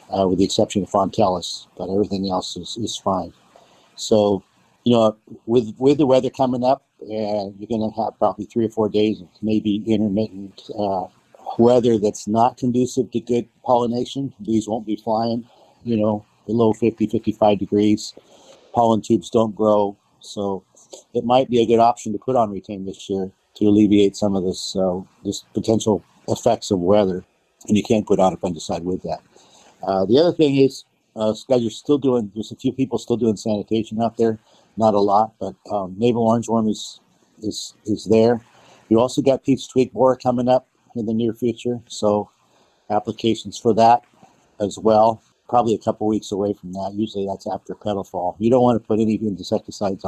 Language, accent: English, American